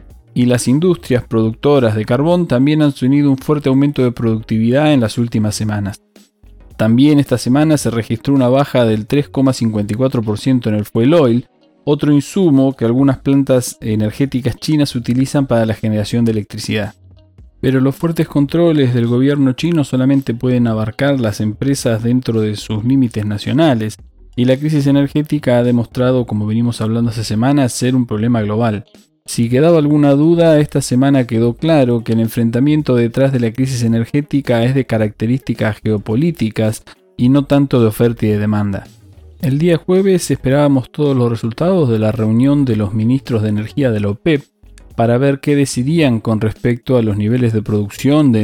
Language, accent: Spanish, Argentinian